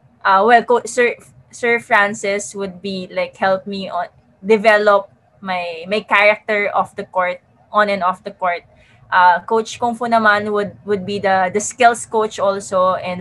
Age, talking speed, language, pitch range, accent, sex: 20-39, 175 wpm, English, 185-220 Hz, Filipino, female